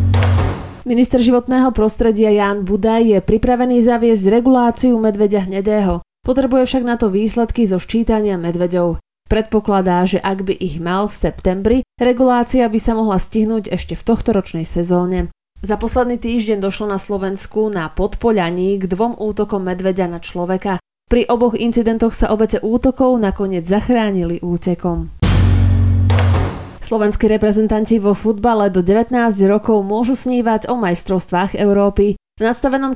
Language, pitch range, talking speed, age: Slovak, 185-230 Hz, 135 wpm, 20-39